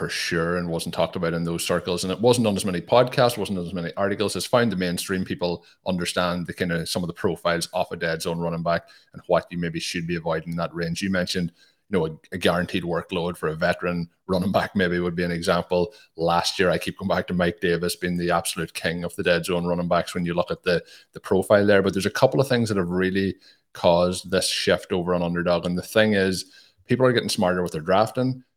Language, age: English, 30-49